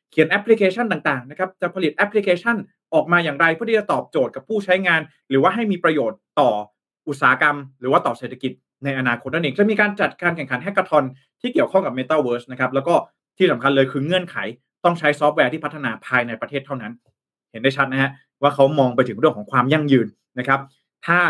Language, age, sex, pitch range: Thai, 20-39, male, 135-185 Hz